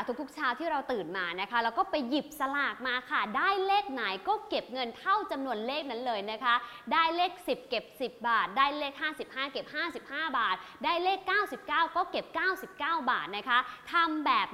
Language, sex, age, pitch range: English, female, 20-39, 220-310 Hz